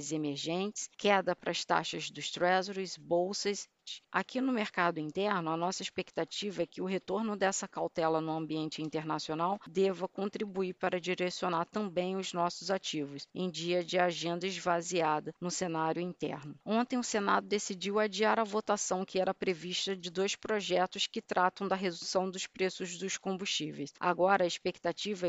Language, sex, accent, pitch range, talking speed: Portuguese, female, Brazilian, 175-195 Hz, 150 wpm